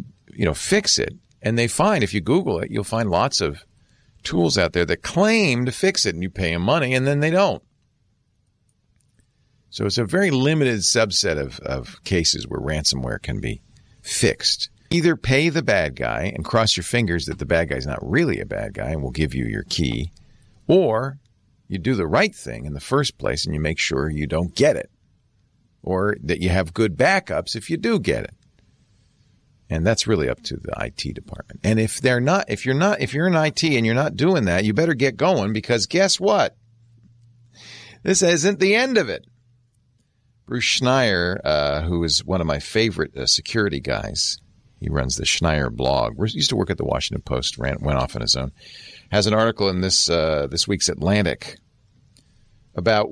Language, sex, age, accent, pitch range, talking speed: English, male, 50-69, American, 85-135 Hz, 200 wpm